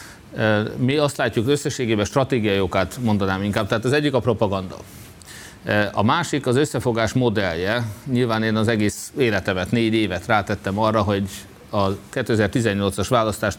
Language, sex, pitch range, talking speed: Hungarian, male, 105-120 Hz, 135 wpm